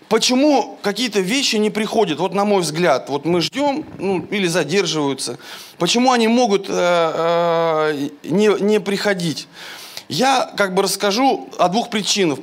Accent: native